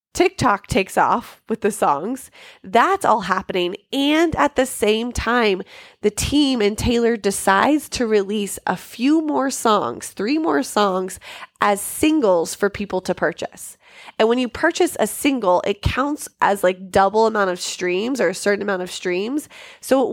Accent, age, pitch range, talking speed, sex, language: American, 20-39, 200-280 Hz, 165 wpm, female, English